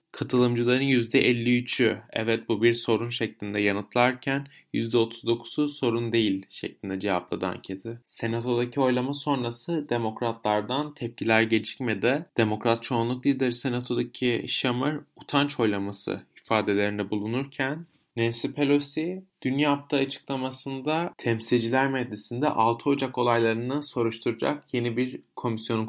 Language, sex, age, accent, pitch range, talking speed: Turkish, male, 30-49, native, 115-135 Hz, 100 wpm